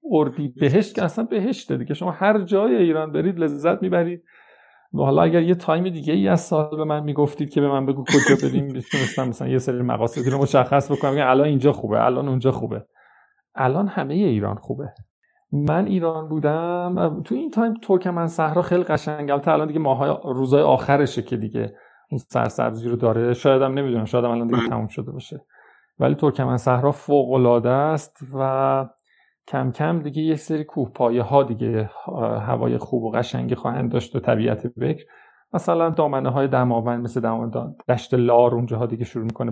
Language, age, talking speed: Persian, 40-59, 180 wpm